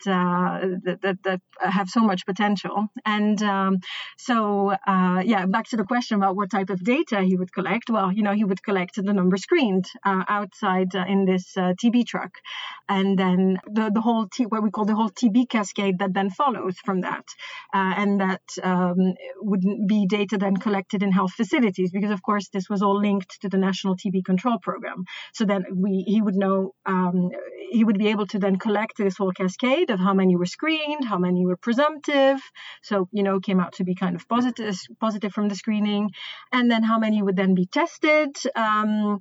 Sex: female